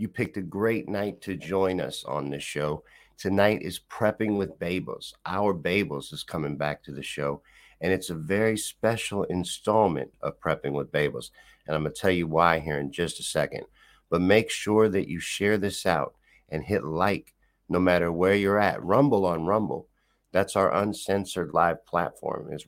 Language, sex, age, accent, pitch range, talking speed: English, male, 50-69, American, 80-105 Hz, 190 wpm